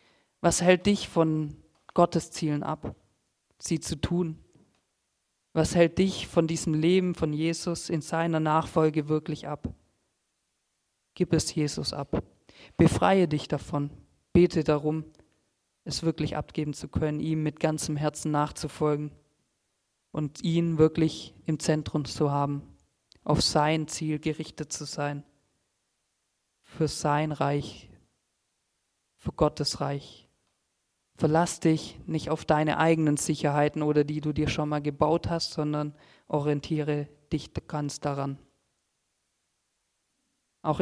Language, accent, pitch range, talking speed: German, German, 150-165 Hz, 120 wpm